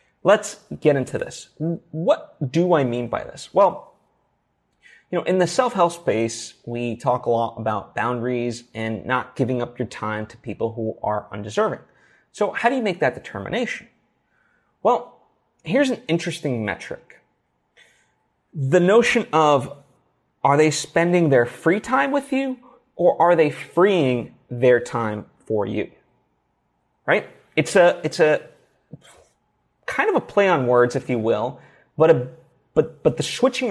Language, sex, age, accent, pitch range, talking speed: English, male, 30-49, American, 120-170 Hz, 150 wpm